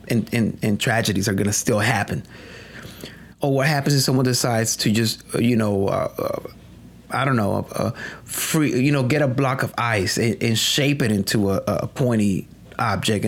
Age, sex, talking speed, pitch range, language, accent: 30-49, male, 190 wpm, 105-135 Hz, English, American